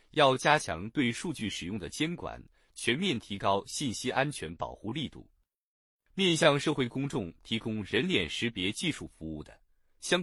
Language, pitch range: Chinese, 95-150 Hz